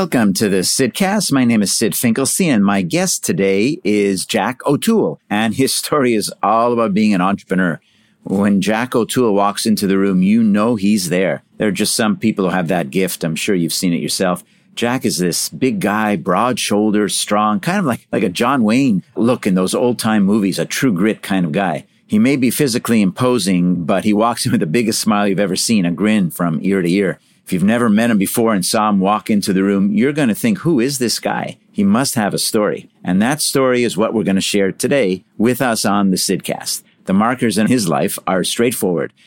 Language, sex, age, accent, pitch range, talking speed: English, male, 50-69, American, 95-125 Hz, 225 wpm